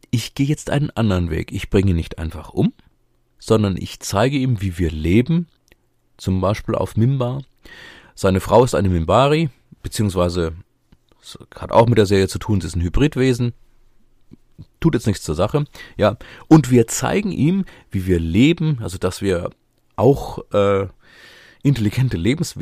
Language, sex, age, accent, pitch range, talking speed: German, male, 30-49, German, 95-130 Hz, 155 wpm